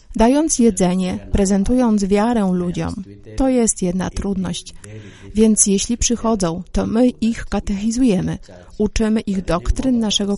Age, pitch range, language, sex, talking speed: 30-49, 185-235 Hz, Polish, female, 115 wpm